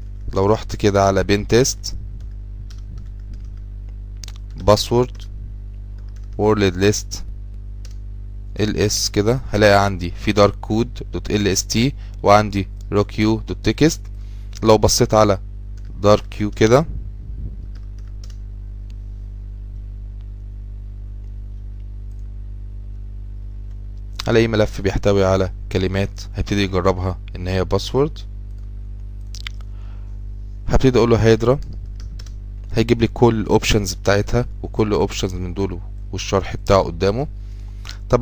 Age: 20-39